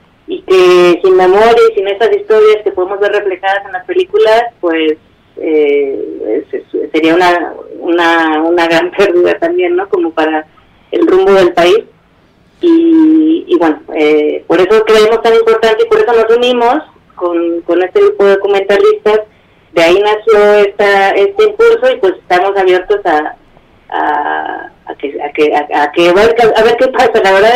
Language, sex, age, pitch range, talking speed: Spanish, female, 30-49, 185-260 Hz, 170 wpm